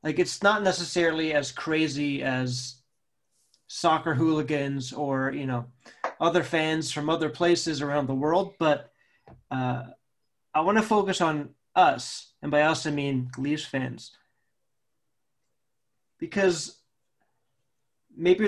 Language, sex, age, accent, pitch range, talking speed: English, male, 30-49, American, 135-165 Hz, 120 wpm